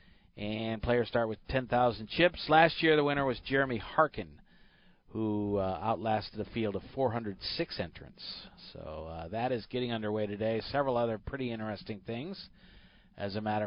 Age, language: 40-59, English